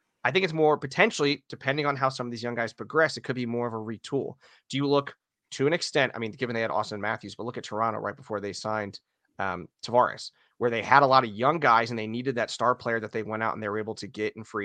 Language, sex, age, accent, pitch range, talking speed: English, male, 30-49, American, 110-130 Hz, 285 wpm